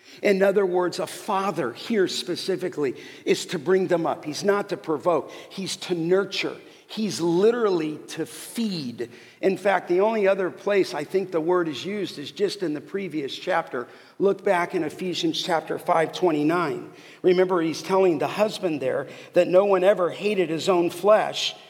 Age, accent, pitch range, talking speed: 50-69, American, 170-205 Hz, 170 wpm